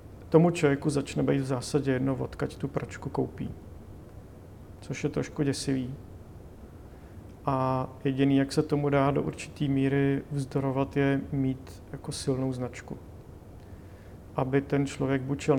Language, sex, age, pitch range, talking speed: Czech, male, 40-59, 105-140 Hz, 130 wpm